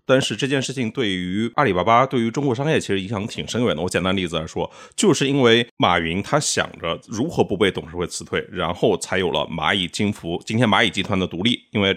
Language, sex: Chinese, male